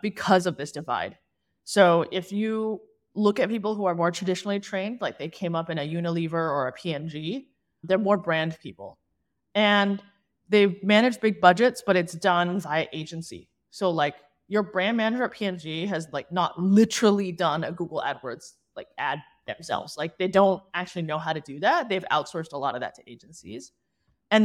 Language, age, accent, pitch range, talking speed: English, 20-39, American, 165-210 Hz, 185 wpm